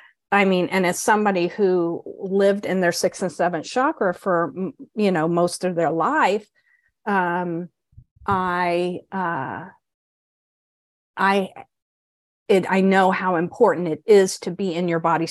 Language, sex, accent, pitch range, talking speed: English, female, American, 170-190 Hz, 135 wpm